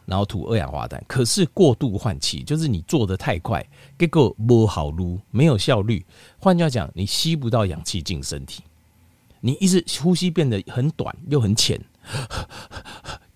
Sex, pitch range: male, 90-145 Hz